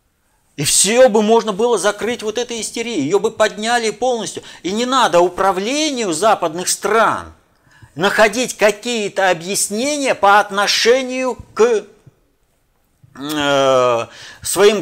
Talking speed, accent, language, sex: 110 wpm, native, Russian, male